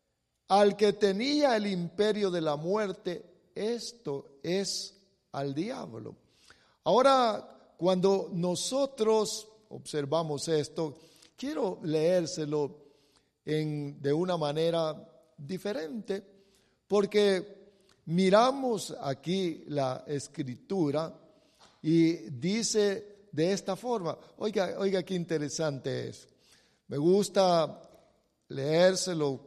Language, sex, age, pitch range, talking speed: English, male, 50-69, 160-210 Hz, 85 wpm